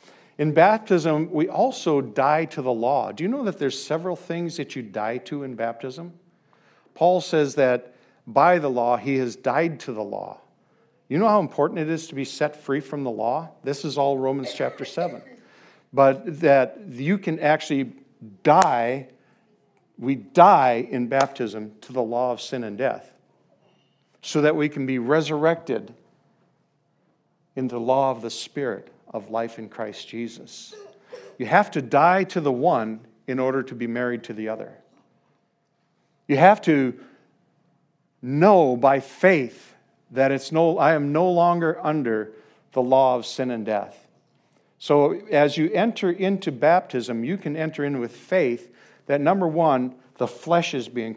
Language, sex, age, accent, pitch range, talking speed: English, male, 50-69, American, 125-165 Hz, 165 wpm